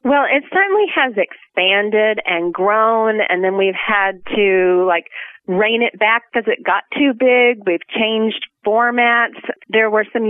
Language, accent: English, American